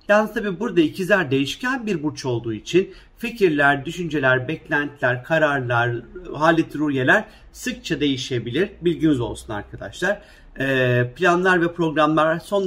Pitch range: 130-170 Hz